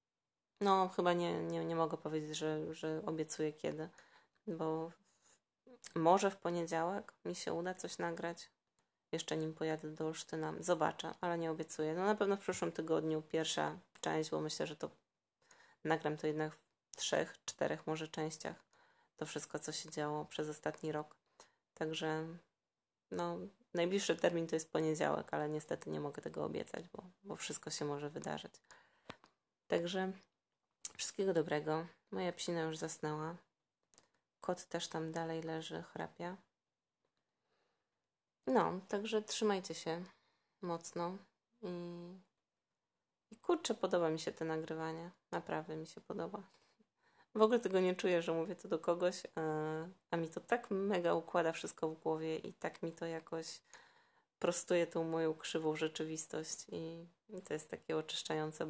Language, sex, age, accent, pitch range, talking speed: Polish, female, 20-39, native, 155-180 Hz, 145 wpm